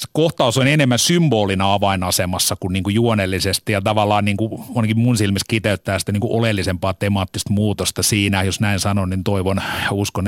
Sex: male